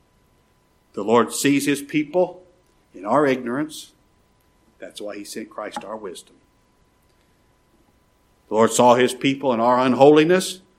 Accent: American